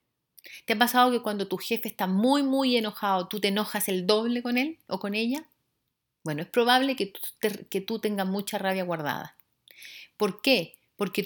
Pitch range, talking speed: 185-240 Hz, 190 wpm